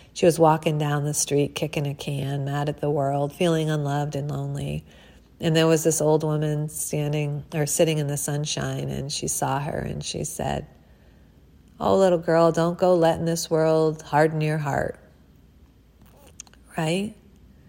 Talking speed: 165 wpm